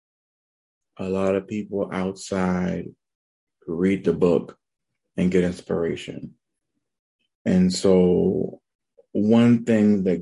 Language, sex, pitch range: English, male, 85-95 Hz